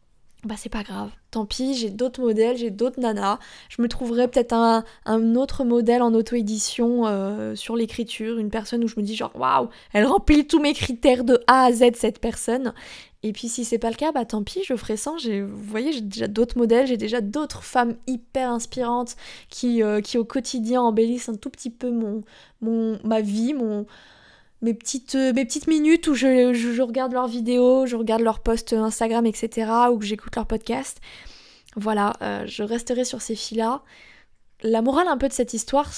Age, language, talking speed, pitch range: 20-39, French, 195 wpm, 215-245 Hz